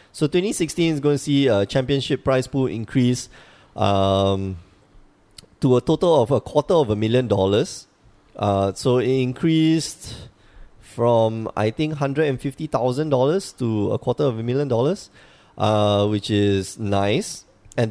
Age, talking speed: 20-39, 155 wpm